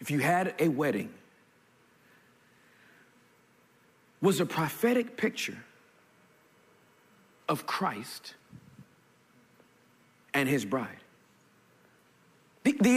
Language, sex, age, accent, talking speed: English, male, 40-59, American, 70 wpm